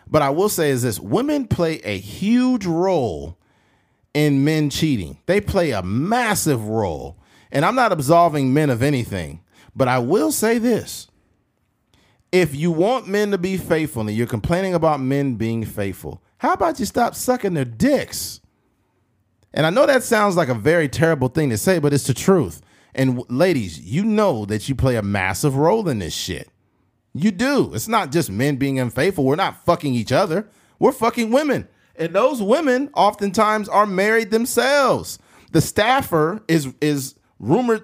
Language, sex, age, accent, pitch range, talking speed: English, male, 40-59, American, 125-210 Hz, 175 wpm